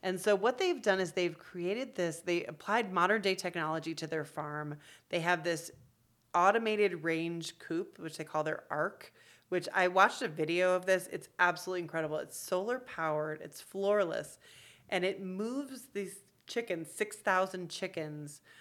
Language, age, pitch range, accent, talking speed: English, 30-49, 160-185 Hz, American, 160 wpm